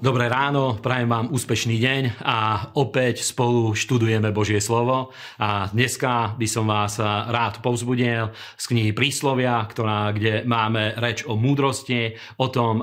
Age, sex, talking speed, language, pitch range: 40-59, male, 140 wpm, Slovak, 110-130 Hz